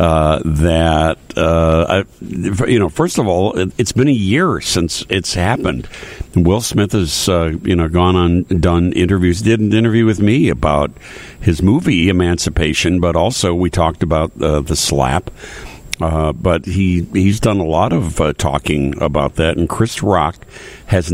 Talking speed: 175 wpm